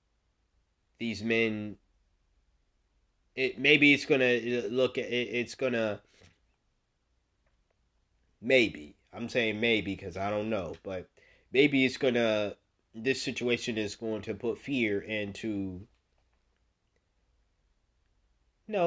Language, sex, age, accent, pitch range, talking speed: English, male, 20-39, American, 90-110 Hz, 110 wpm